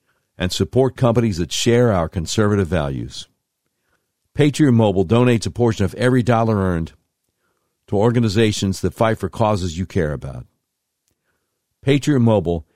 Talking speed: 130 wpm